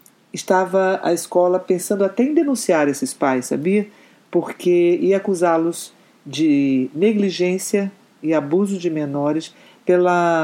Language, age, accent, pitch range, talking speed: Portuguese, 50-69, Brazilian, 155-200 Hz, 115 wpm